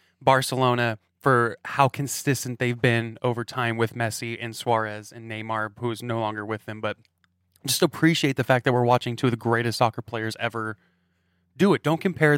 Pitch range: 115-150 Hz